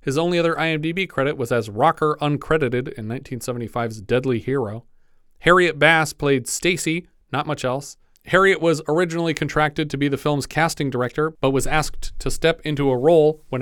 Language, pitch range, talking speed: English, 130-160 Hz, 170 wpm